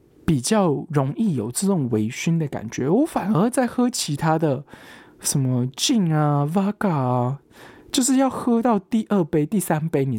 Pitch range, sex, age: 145-220 Hz, male, 20-39